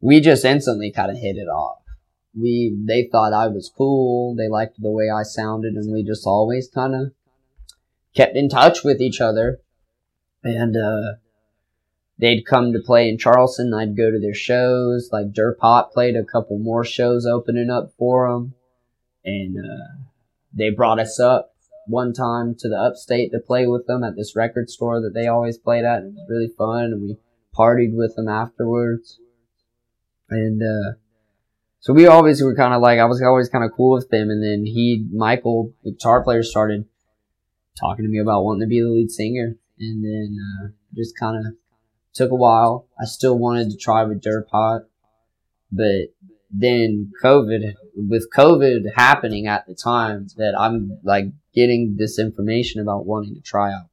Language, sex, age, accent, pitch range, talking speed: English, male, 20-39, American, 105-120 Hz, 180 wpm